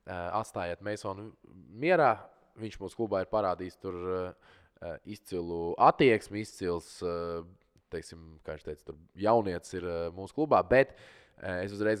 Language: English